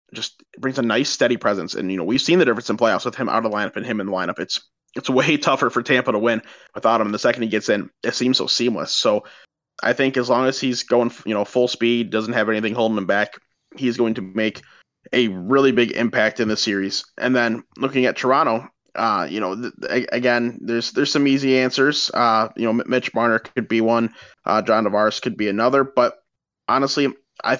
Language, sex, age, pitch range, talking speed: English, male, 20-39, 110-130 Hz, 235 wpm